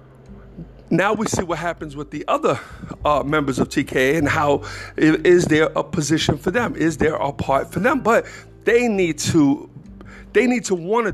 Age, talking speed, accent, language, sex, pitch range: 50-69, 190 wpm, American, English, male, 125-185 Hz